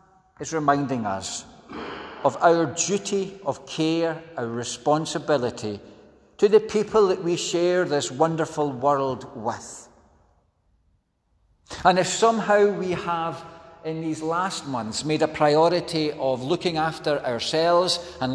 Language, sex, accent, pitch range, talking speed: English, male, British, 110-160 Hz, 120 wpm